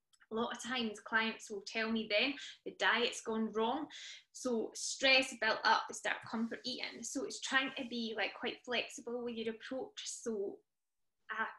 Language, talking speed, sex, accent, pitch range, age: English, 180 wpm, female, British, 210-255 Hz, 20-39